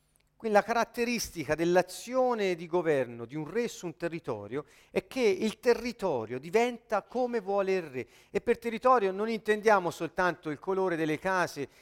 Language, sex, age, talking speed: Italian, male, 40-59, 155 wpm